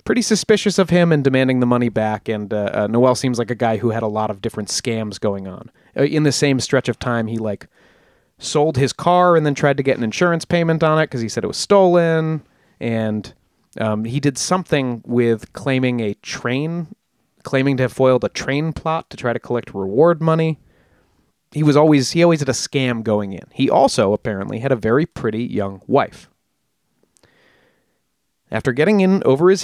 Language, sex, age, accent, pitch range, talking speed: English, male, 30-49, American, 115-160 Hz, 200 wpm